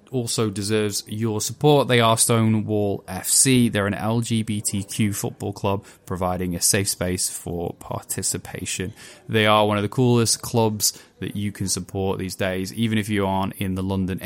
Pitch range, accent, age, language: 95-115 Hz, British, 10-29, English